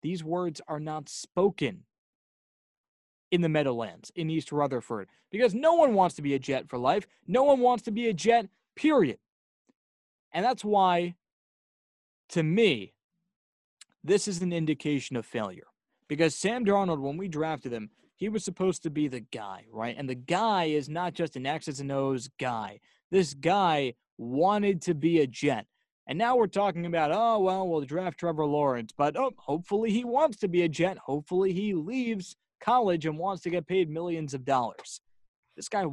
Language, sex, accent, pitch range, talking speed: English, male, American, 140-195 Hz, 180 wpm